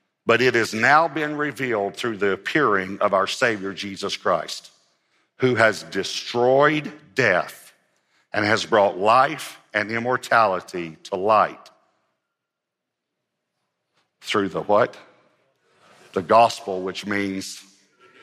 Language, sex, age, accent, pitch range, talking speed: English, male, 50-69, American, 90-110 Hz, 110 wpm